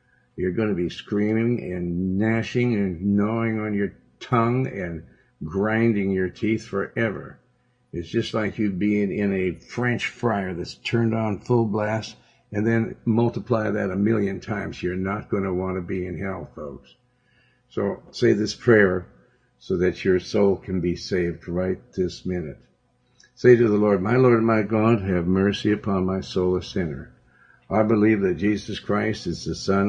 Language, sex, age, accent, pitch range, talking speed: English, male, 60-79, American, 90-110 Hz, 170 wpm